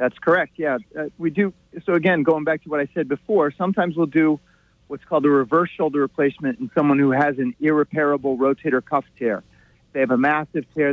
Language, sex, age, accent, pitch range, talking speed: English, male, 40-59, American, 130-160 Hz, 210 wpm